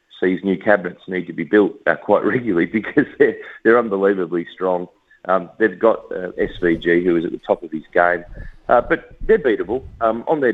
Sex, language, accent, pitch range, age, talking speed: male, English, Australian, 85-110 Hz, 40-59, 205 wpm